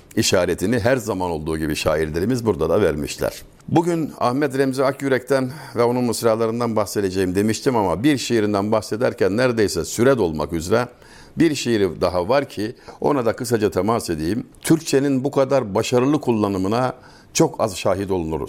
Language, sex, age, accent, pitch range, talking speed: Turkish, male, 60-79, native, 105-140 Hz, 145 wpm